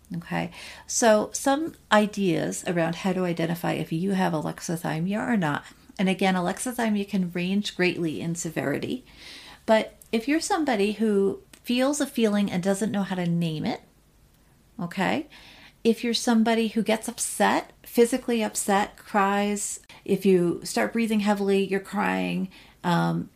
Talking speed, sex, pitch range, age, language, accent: 140 wpm, female, 170-220 Hz, 40-59, English, American